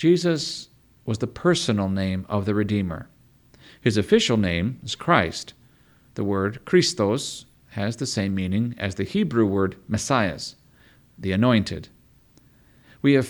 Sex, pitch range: male, 100-135 Hz